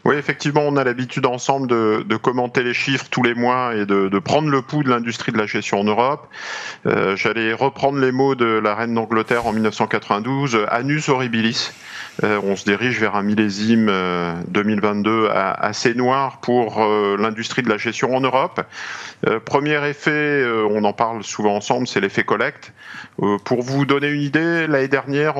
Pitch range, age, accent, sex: 110-140 Hz, 50-69, French, male